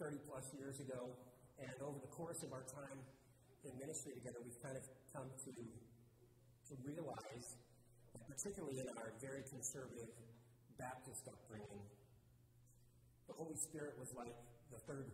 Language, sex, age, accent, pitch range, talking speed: English, male, 40-59, American, 120-150 Hz, 145 wpm